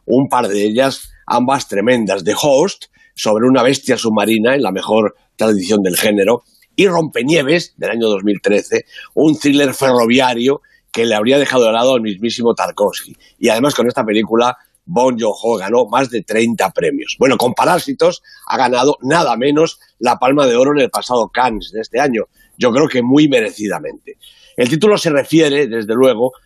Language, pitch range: Spanish, 115-150 Hz